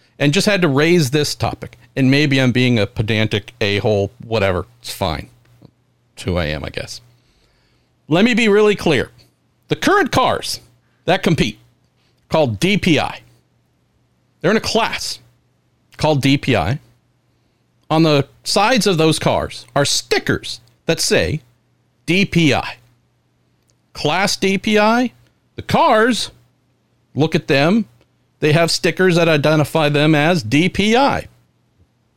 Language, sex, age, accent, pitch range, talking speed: English, male, 50-69, American, 120-160 Hz, 125 wpm